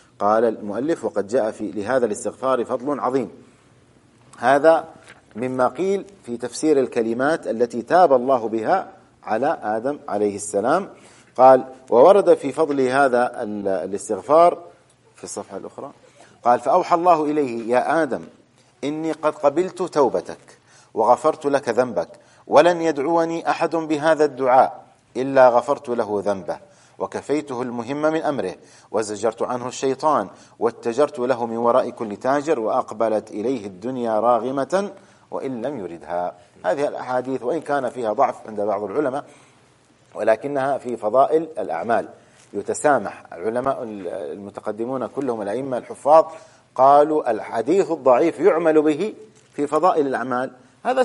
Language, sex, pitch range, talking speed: English, male, 120-160 Hz, 120 wpm